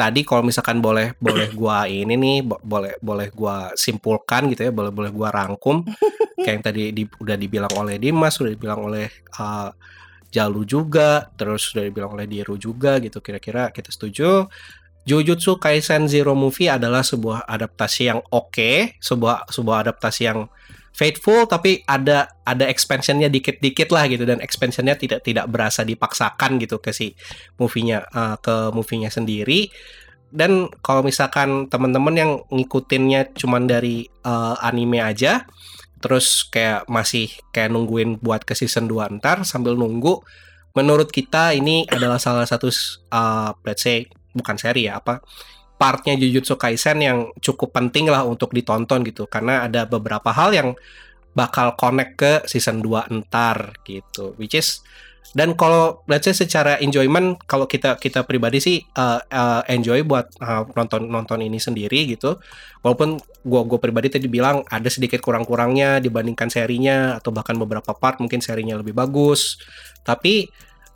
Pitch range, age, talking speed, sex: 110-135 Hz, 20-39, 150 wpm, male